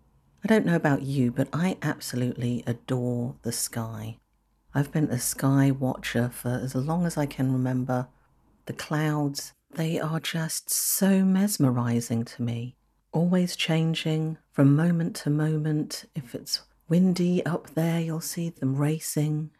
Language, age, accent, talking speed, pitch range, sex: English, 50-69, British, 145 wpm, 125-160 Hz, female